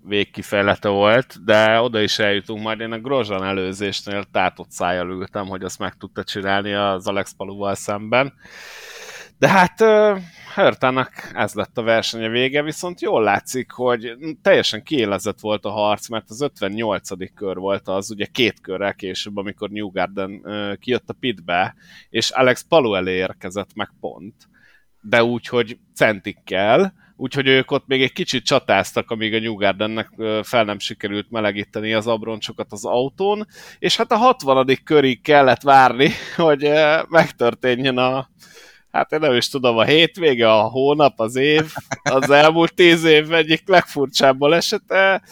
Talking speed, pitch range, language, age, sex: 150 wpm, 105-145 Hz, Hungarian, 30-49, male